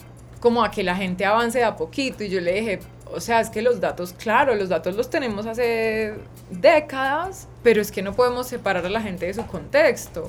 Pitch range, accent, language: 205-245 Hz, Colombian, Spanish